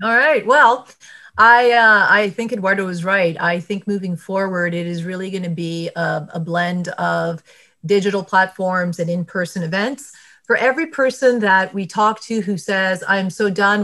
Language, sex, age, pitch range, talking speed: English, female, 30-49, 185-225 Hz, 175 wpm